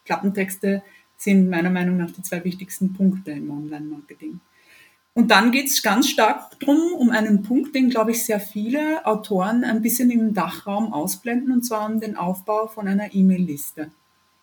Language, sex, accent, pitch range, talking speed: German, female, German, 190-230 Hz, 165 wpm